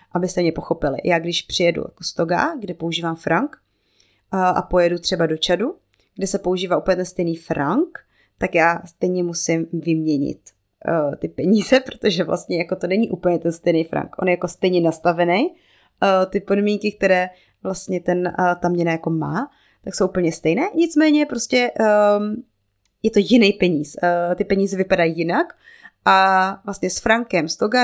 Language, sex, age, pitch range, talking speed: Czech, female, 20-39, 165-190 Hz, 170 wpm